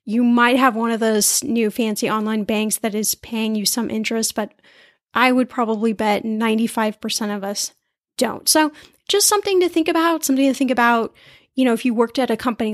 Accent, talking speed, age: American, 205 wpm, 10-29